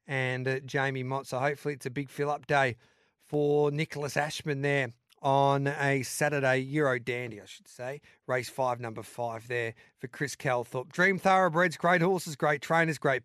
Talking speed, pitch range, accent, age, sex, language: 170 wpm, 135-155 Hz, Australian, 40-59, male, English